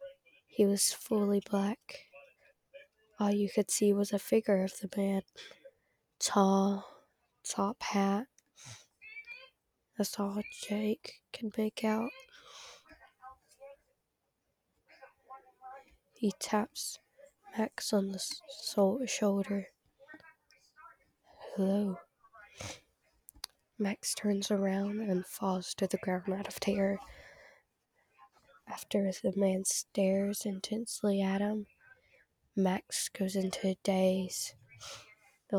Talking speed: 90 wpm